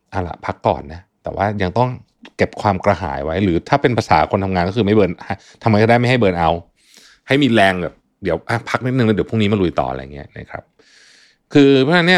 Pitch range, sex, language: 85-120 Hz, male, Thai